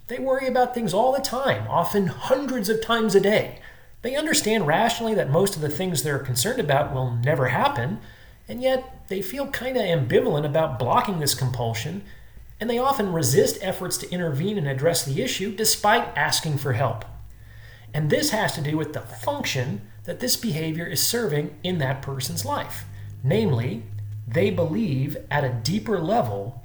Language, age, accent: English, 30-49, American